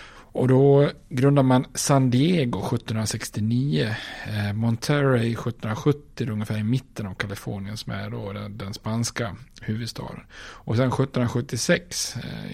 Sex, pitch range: male, 110-130 Hz